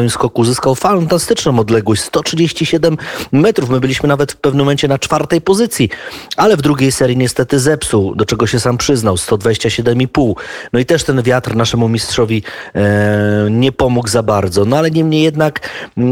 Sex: male